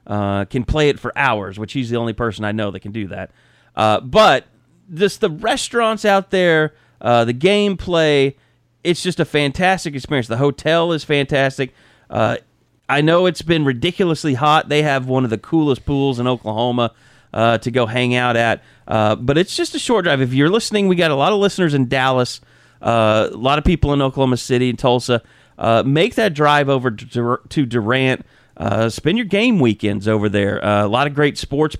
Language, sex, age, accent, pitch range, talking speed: English, male, 30-49, American, 115-155 Hz, 205 wpm